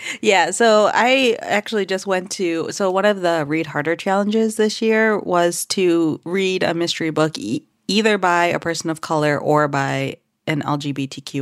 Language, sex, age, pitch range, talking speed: English, female, 30-49, 140-190 Hz, 170 wpm